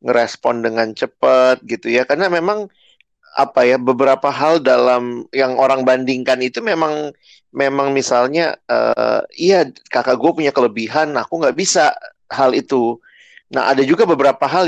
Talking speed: 145 wpm